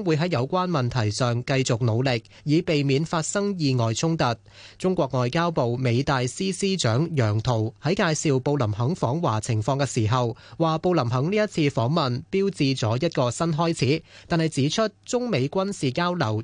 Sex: male